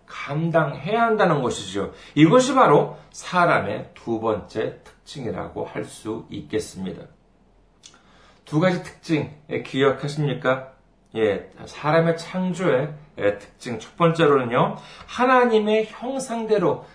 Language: Korean